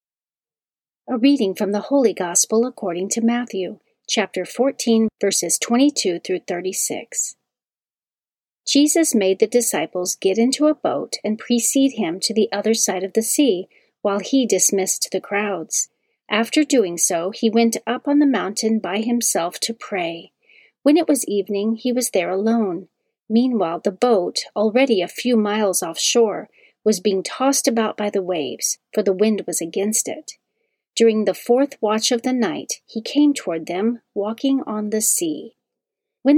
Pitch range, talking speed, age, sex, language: 200-260 Hz, 160 wpm, 40-59, female, English